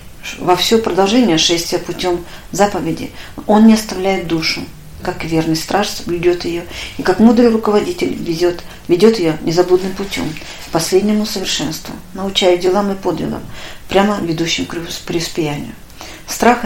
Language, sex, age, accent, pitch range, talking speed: Russian, female, 40-59, native, 170-205 Hz, 130 wpm